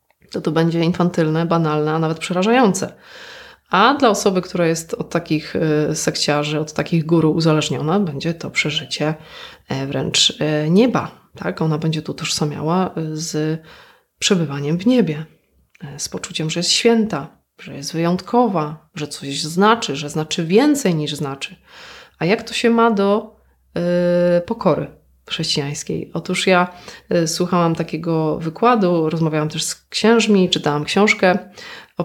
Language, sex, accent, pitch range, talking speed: Polish, female, native, 155-195 Hz, 130 wpm